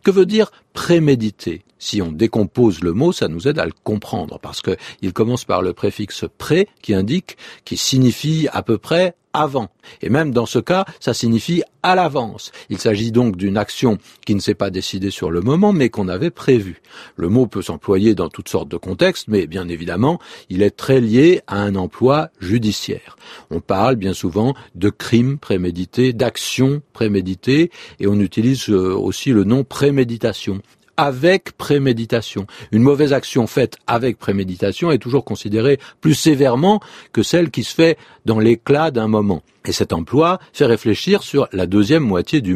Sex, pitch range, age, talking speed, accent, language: male, 105-140 Hz, 50-69, 180 wpm, French, French